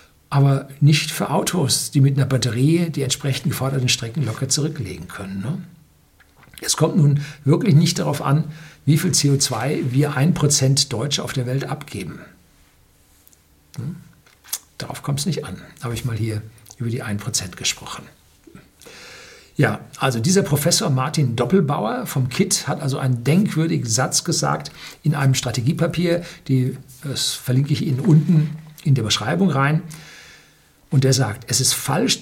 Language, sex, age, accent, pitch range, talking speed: German, male, 60-79, German, 130-160 Hz, 145 wpm